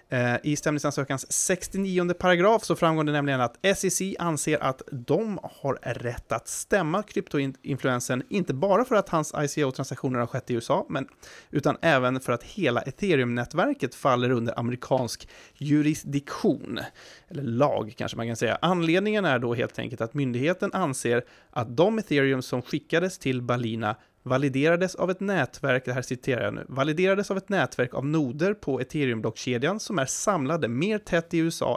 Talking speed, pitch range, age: 160 wpm, 125-170 Hz, 30-49